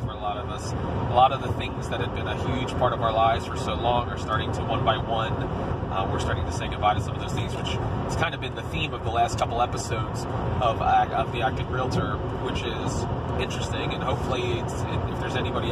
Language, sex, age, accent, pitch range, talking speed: English, male, 20-39, American, 105-125 Hz, 235 wpm